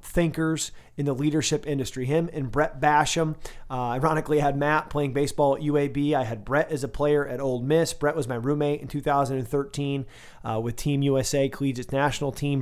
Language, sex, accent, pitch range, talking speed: English, male, American, 135-155 Hz, 190 wpm